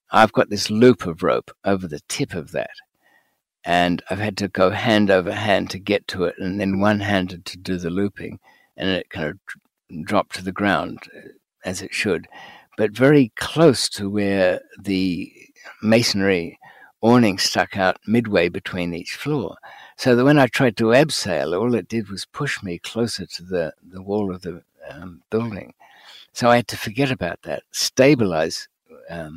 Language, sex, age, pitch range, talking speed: English, male, 60-79, 90-115 Hz, 175 wpm